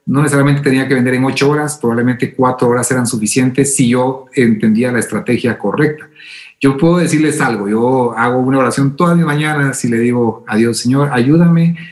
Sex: male